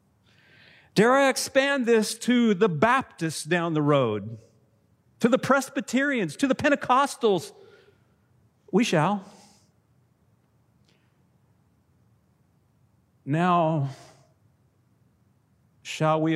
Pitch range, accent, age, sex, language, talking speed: 115-145 Hz, American, 50-69, male, English, 75 wpm